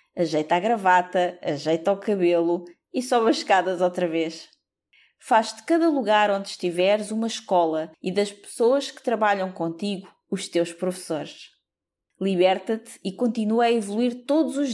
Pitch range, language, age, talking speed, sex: 180-230 Hz, Portuguese, 20-39, 145 wpm, female